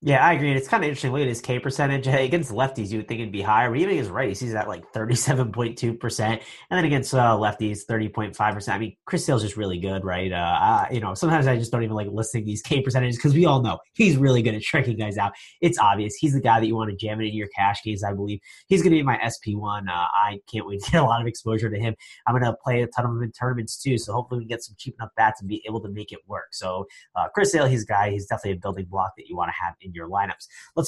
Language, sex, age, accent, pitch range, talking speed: English, male, 20-39, American, 105-145 Hz, 295 wpm